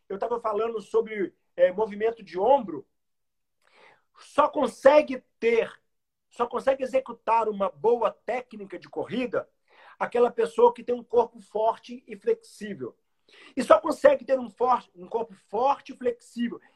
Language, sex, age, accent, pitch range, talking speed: Portuguese, male, 40-59, Brazilian, 235-330 Hz, 135 wpm